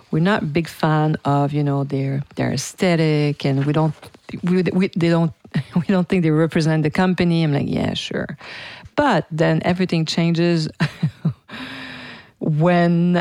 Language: English